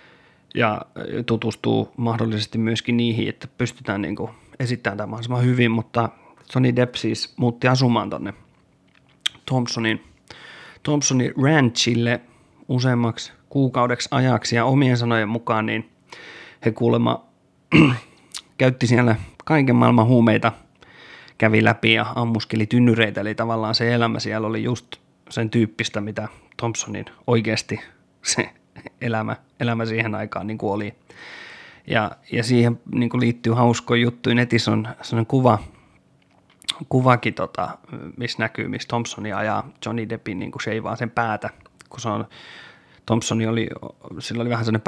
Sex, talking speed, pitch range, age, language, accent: male, 125 wpm, 110-125 Hz, 30-49, Finnish, native